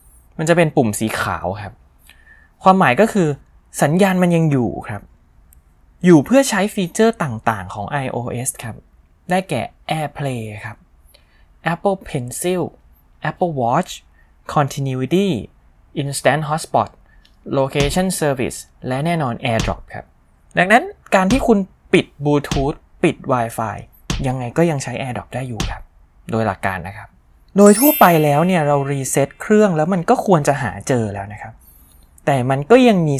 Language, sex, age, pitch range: Thai, male, 20-39, 100-170 Hz